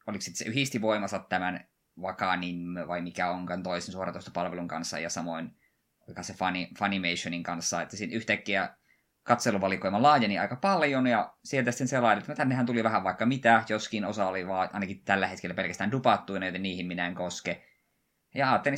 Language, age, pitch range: Finnish, 20-39, 90-115 Hz